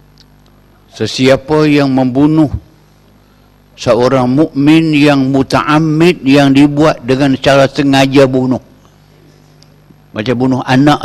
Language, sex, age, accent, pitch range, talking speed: Malayalam, male, 60-79, Indonesian, 120-150 Hz, 85 wpm